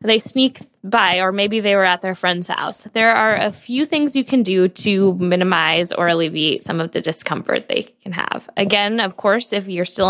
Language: English